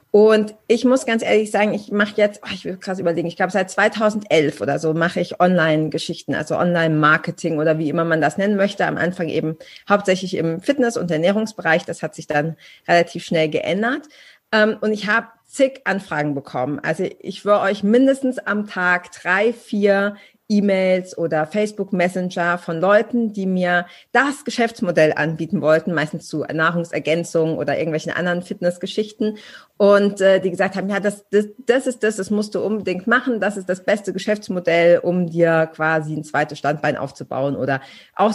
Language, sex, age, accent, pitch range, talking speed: German, female, 40-59, German, 170-210 Hz, 170 wpm